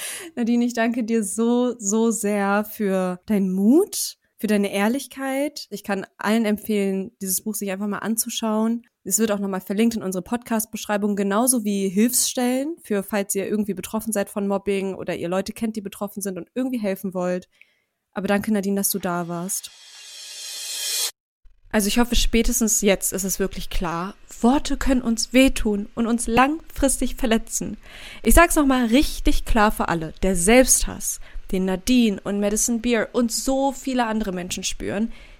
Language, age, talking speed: German, 20-39, 165 wpm